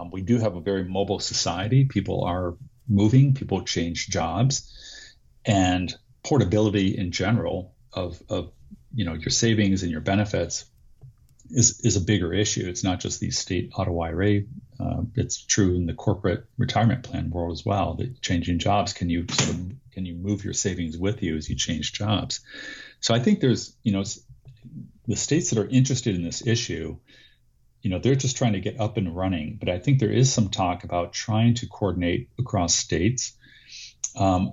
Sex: male